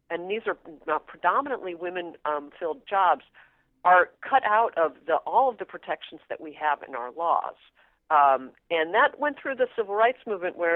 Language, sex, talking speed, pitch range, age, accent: English, female, 175 wpm, 160-240 Hz, 50-69, American